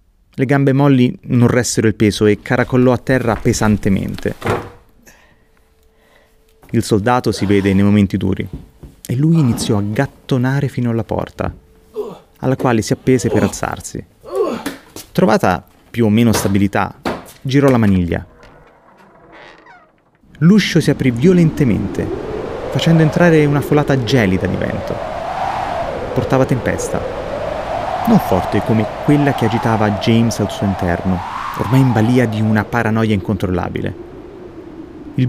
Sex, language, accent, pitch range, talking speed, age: male, Italian, native, 105-145 Hz, 120 wpm, 30-49